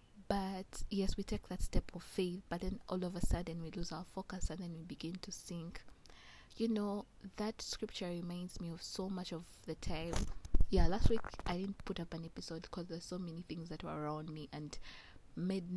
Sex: female